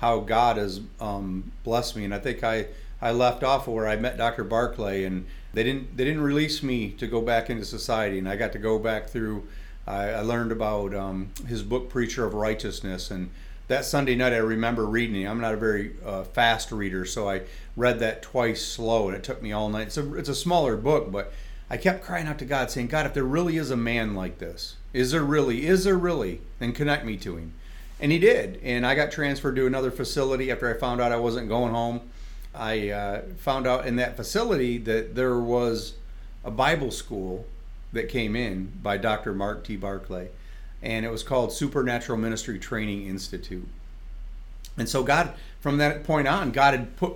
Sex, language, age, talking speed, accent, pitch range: male, English, 40-59, 210 wpm, American, 100-125 Hz